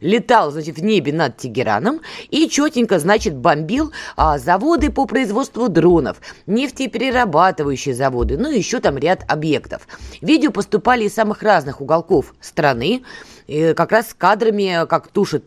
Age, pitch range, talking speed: 20-39, 160-250 Hz, 135 wpm